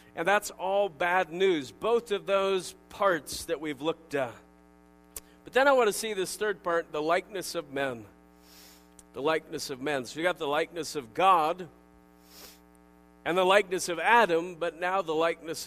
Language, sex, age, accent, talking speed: English, male, 40-59, American, 175 wpm